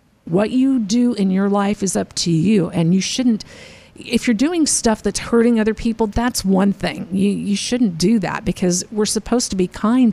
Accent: American